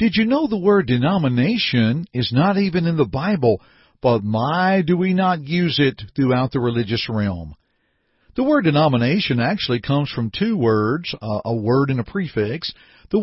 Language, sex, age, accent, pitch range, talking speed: English, male, 50-69, American, 130-180 Hz, 170 wpm